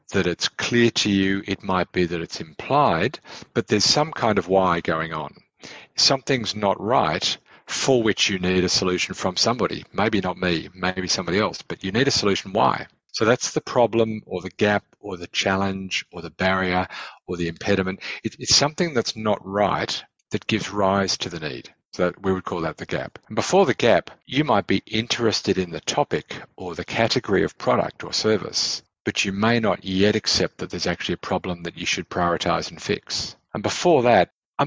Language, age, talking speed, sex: English, 50-69, 200 wpm, male